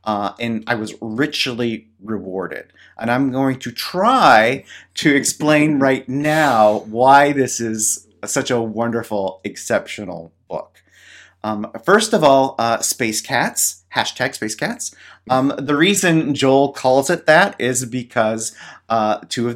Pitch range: 100-130 Hz